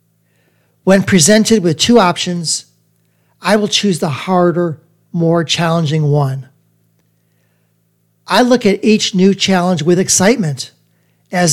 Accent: American